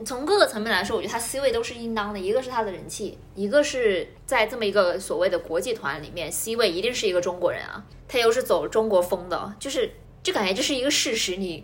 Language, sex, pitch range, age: Chinese, female, 185-260 Hz, 20-39